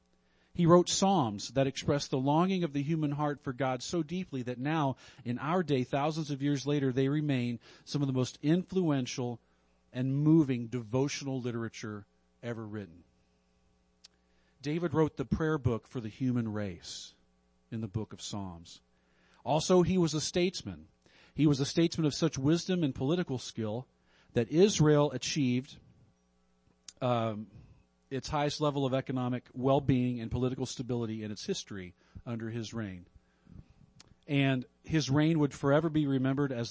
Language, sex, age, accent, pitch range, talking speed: English, male, 40-59, American, 110-150 Hz, 150 wpm